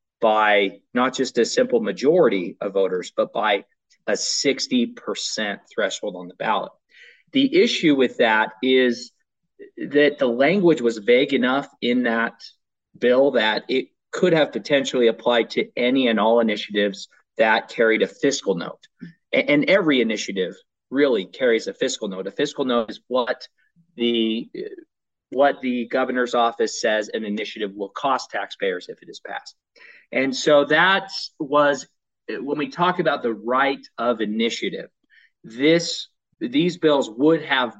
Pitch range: 115-155 Hz